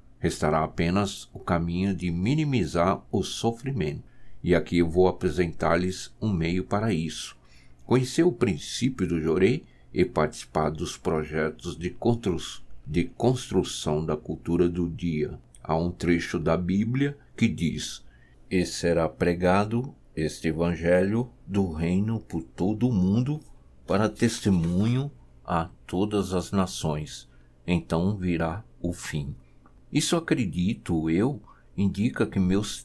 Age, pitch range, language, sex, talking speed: 60-79, 80-105 Hz, Portuguese, male, 120 wpm